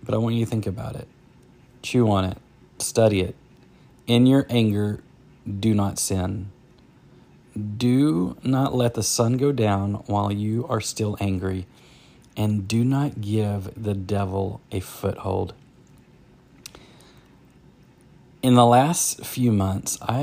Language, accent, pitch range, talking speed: English, American, 100-125 Hz, 130 wpm